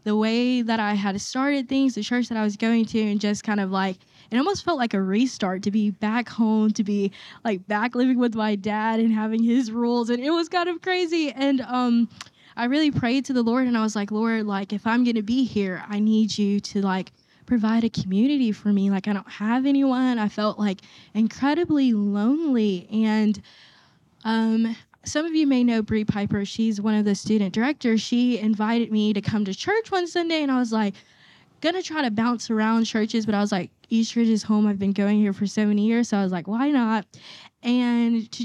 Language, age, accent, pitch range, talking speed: English, 10-29, American, 205-245 Hz, 225 wpm